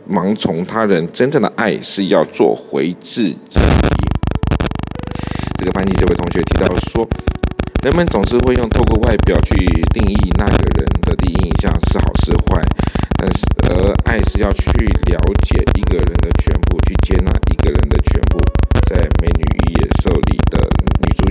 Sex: male